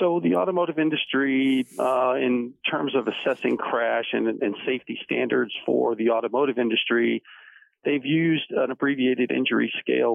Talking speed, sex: 140 wpm, male